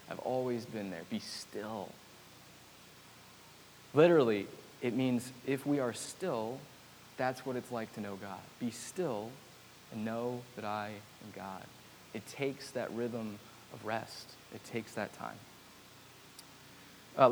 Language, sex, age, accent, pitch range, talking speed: English, male, 20-39, American, 110-140 Hz, 135 wpm